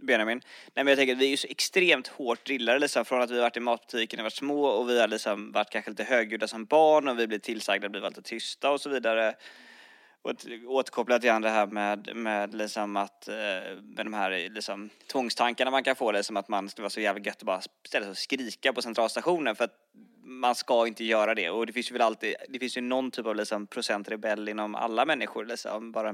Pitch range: 110-130 Hz